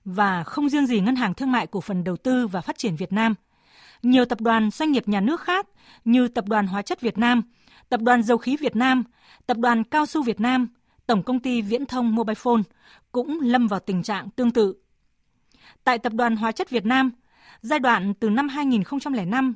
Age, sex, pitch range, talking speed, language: 20-39, female, 210-260 Hz, 210 wpm, Vietnamese